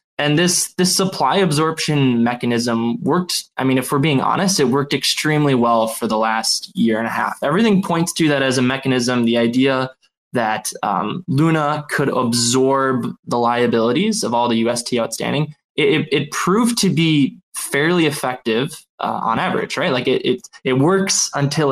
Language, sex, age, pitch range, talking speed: English, male, 20-39, 120-155 Hz, 170 wpm